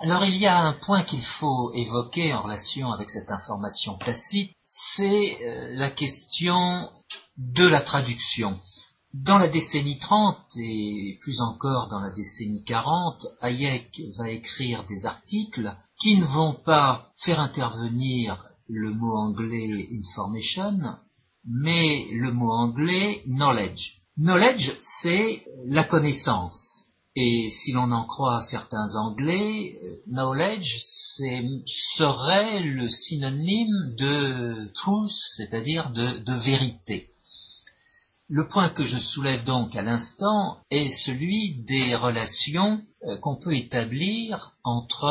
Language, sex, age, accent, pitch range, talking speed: French, male, 50-69, French, 115-165 Hz, 120 wpm